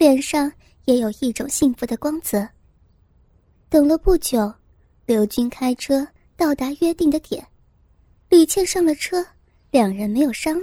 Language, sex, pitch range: Chinese, male, 235-320 Hz